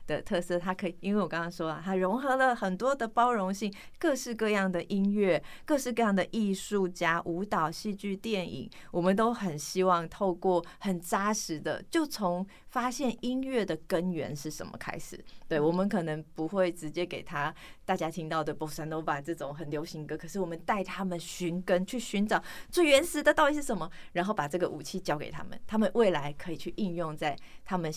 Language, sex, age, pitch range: Chinese, female, 20-39, 170-215 Hz